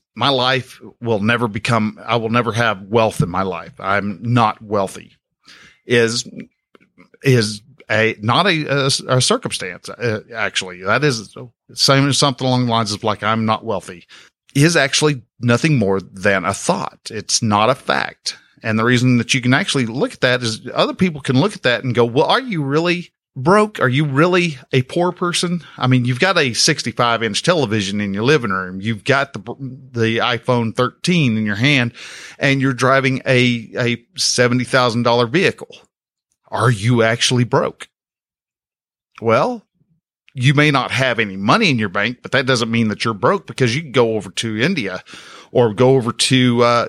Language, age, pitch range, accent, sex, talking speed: English, 50-69, 115-135 Hz, American, male, 180 wpm